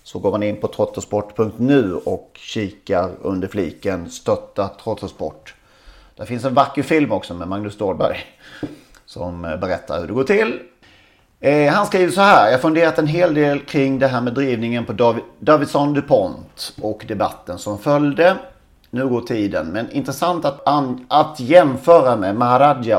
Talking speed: 160 wpm